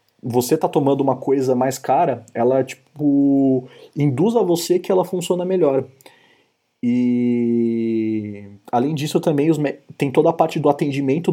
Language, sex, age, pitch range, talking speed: Portuguese, male, 30-49, 125-165 Hz, 150 wpm